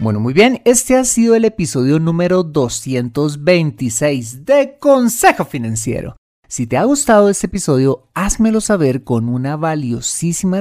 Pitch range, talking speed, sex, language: 125-200 Hz, 135 wpm, male, Spanish